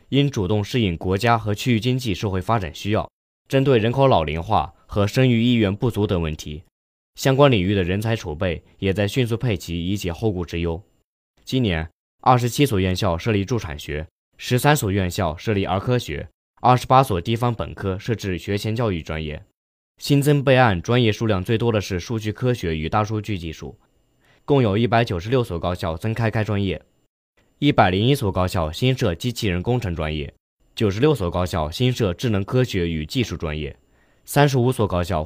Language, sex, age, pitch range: Chinese, male, 20-39, 90-120 Hz